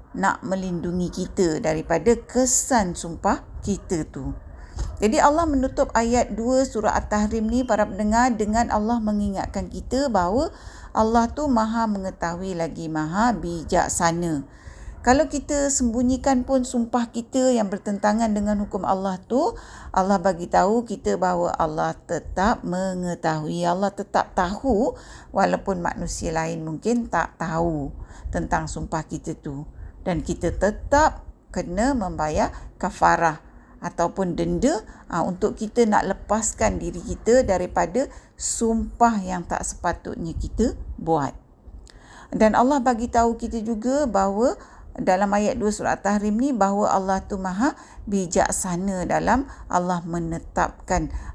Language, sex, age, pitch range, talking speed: Malay, female, 50-69, 175-235 Hz, 125 wpm